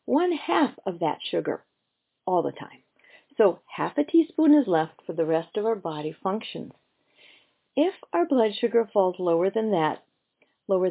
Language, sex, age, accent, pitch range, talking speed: English, female, 50-69, American, 180-255 Hz, 165 wpm